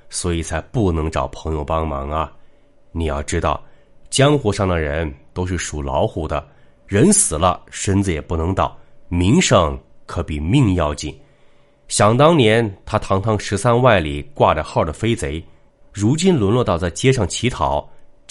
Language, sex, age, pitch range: Chinese, male, 20-39, 80-110 Hz